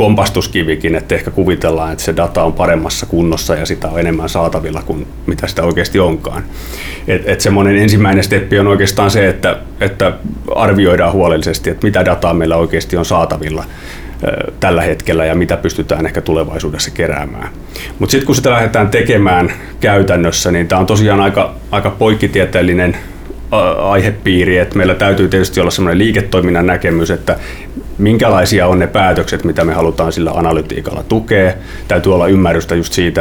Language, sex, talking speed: Finnish, male, 155 wpm